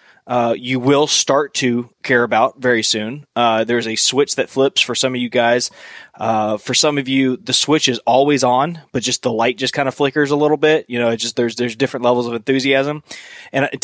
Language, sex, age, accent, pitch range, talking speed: English, male, 20-39, American, 120-145 Hz, 225 wpm